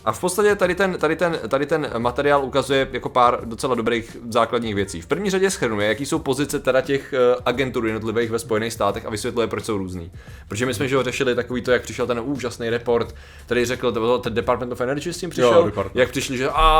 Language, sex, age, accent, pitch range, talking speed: Czech, male, 20-39, native, 115-130 Hz, 205 wpm